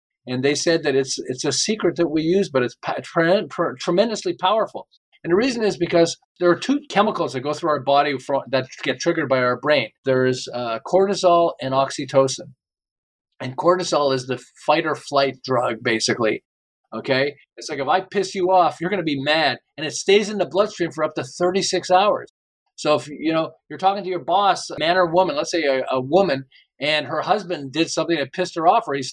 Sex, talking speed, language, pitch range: male, 220 wpm, English, 140-190 Hz